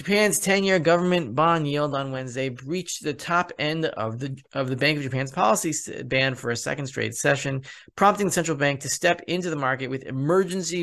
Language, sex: English, male